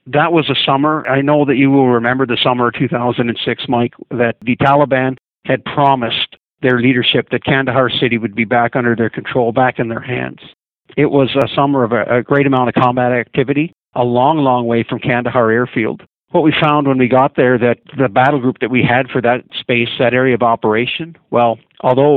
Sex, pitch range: male, 120-145 Hz